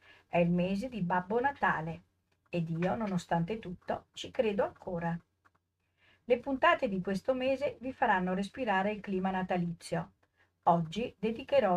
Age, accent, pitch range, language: 50-69, native, 175-225 Hz, Italian